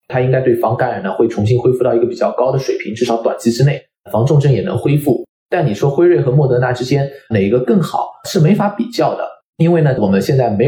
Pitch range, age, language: 120-165 Hz, 20-39, Chinese